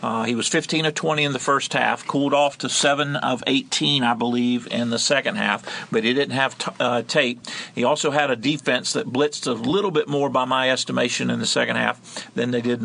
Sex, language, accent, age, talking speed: male, English, American, 50-69, 225 wpm